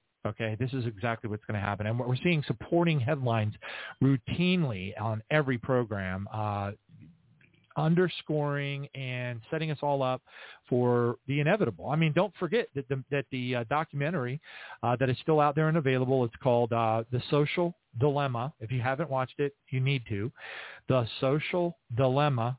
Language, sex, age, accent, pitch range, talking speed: English, male, 40-59, American, 120-150 Hz, 160 wpm